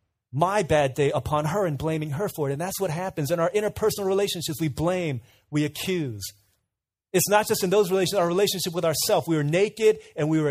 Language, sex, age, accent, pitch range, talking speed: English, male, 30-49, American, 135-190 Hz, 215 wpm